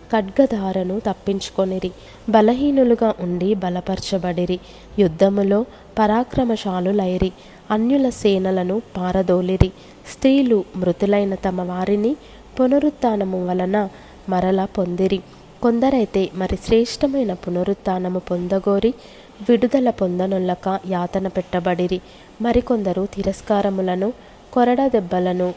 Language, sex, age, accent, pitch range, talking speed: Telugu, female, 20-39, native, 185-225 Hz, 70 wpm